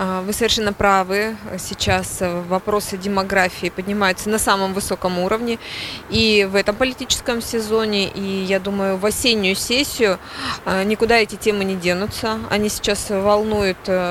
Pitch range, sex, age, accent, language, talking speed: 185-210 Hz, female, 20-39, native, Russian, 130 wpm